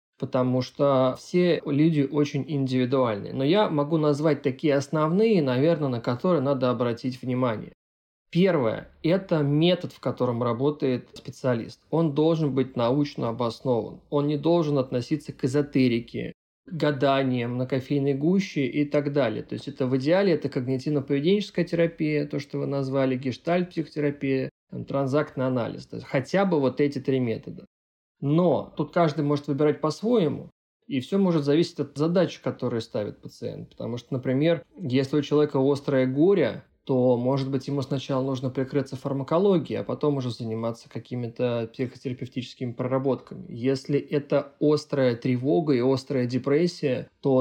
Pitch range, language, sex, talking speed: 130-150 Hz, Russian, male, 145 wpm